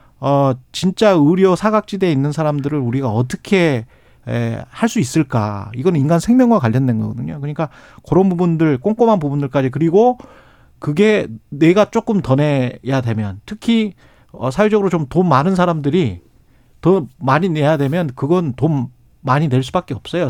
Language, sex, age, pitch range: Korean, male, 40-59, 125-180 Hz